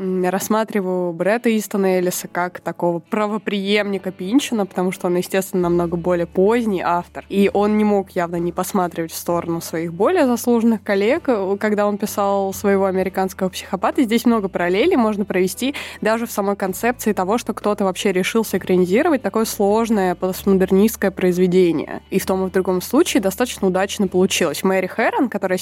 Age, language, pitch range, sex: 20-39, Russian, 185-220 Hz, female